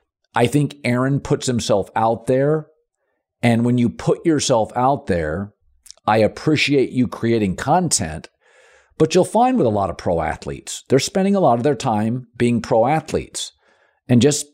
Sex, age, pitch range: male, 50-69, 115-180 Hz